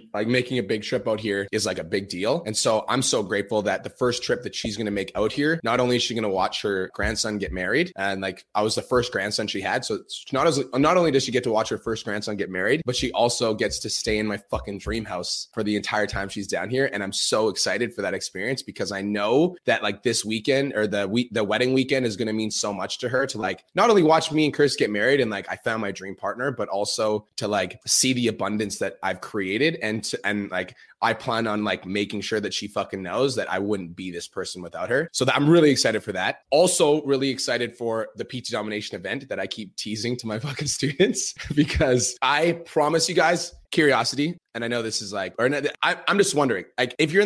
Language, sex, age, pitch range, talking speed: English, male, 20-39, 105-130 Hz, 255 wpm